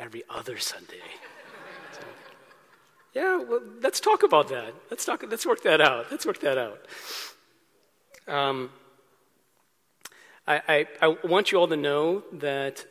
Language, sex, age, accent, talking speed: English, male, 30-49, American, 140 wpm